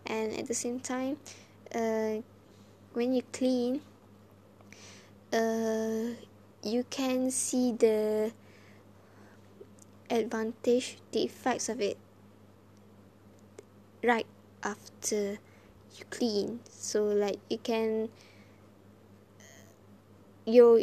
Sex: female